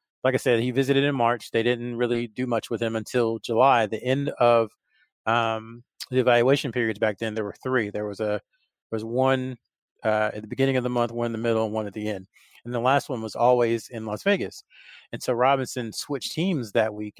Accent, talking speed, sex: American, 230 wpm, male